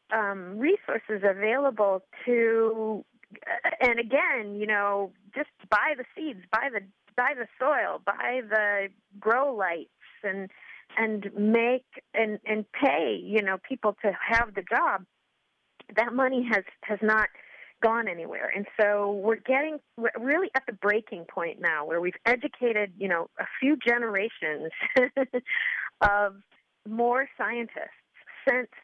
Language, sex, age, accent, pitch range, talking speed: English, female, 30-49, American, 190-235 Hz, 135 wpm